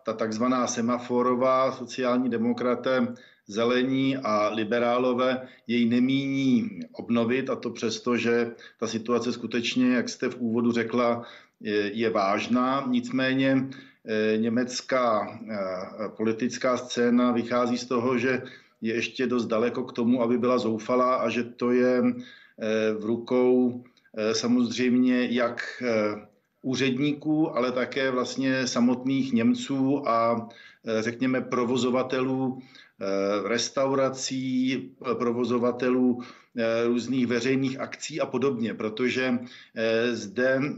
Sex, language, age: male, Czech, 50-69